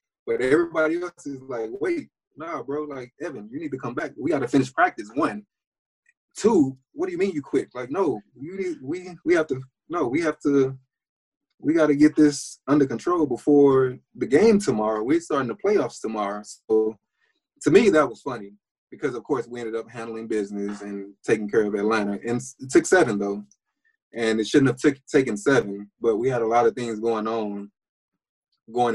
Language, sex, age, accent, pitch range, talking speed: English, male, 20-39, American, 110-155 Hz, 205 wpm